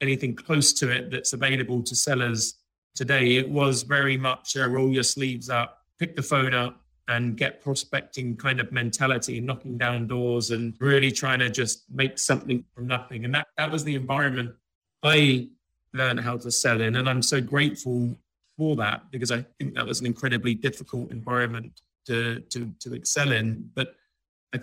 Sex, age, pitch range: male, 30-49, 120-140 Hz